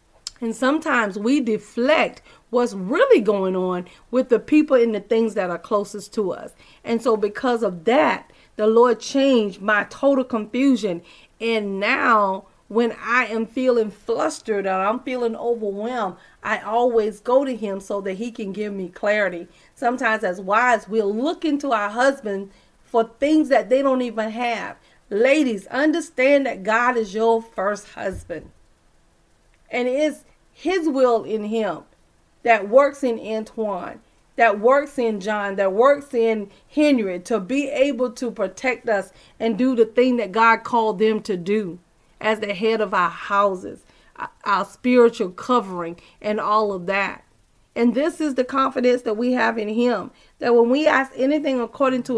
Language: English